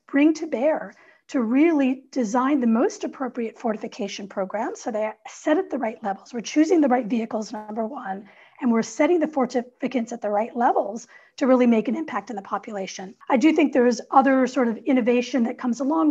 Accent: American